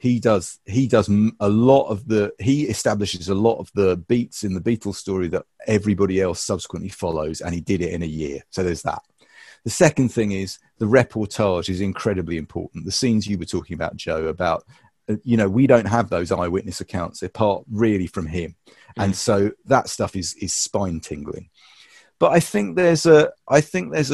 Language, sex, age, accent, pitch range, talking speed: English, male, 40-59, British, 95-125 Hz, 200 wpm